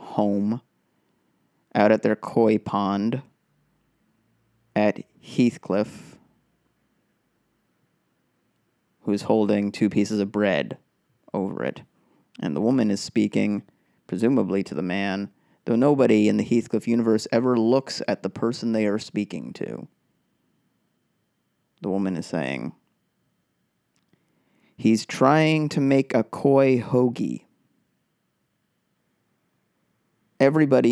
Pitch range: 100-125 Hz